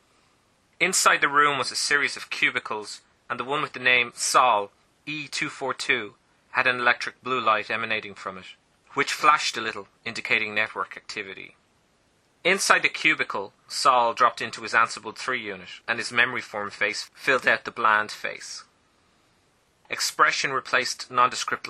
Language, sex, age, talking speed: English, male, 30-49, 150 wpm